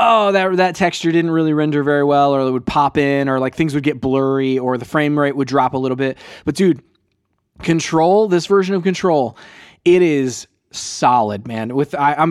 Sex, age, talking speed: male, 20-39, 210 wpm